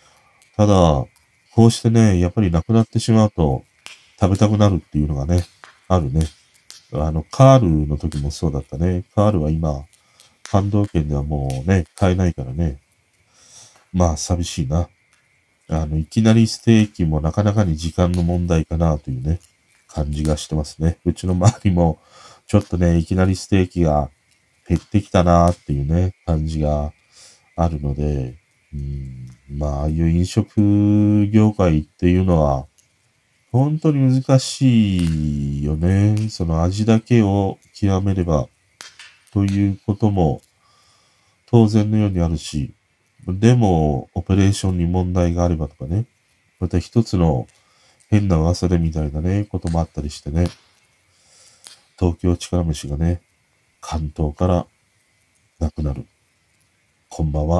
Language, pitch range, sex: Japanese, 80-105 Hz, male